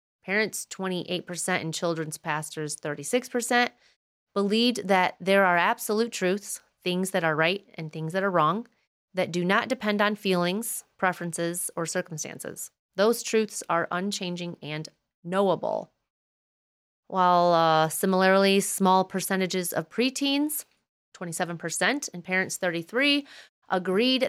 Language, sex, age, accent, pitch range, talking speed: English, female, 30-49, American, 175-205 Hz, 120 wpm